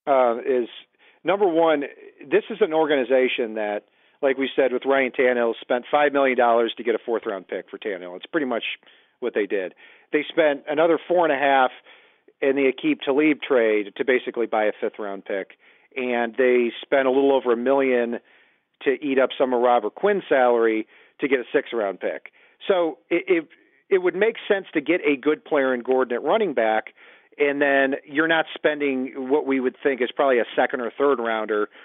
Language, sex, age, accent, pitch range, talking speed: English, male, 40-59, American, 120-160 Hz, 190 wpm